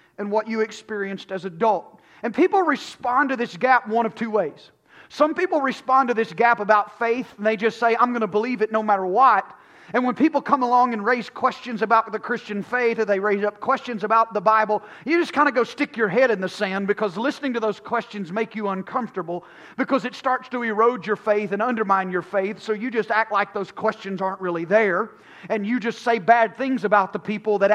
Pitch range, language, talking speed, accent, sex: 205-245 Hz, English, 230 wpm, American, male